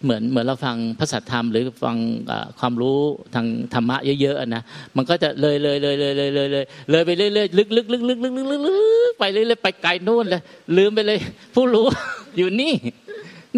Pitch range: 125-180 Hz